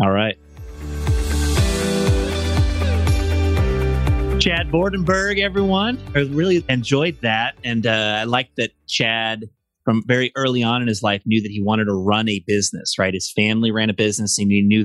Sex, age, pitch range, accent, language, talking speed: male, 30-49, 100-120 Hz, American, English, 160 wpm